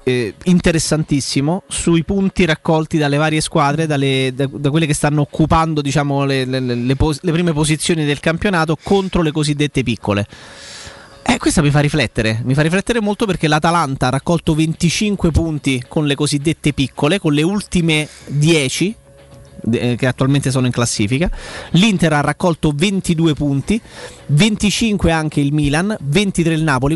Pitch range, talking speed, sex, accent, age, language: 140-175 Hz, 155 wpm, male, native, 30-49, Italian